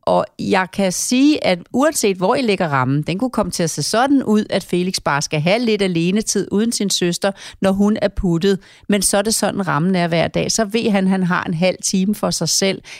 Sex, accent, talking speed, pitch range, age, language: female, native, 240 wpm, 175-215 Hz, 40-59, Danish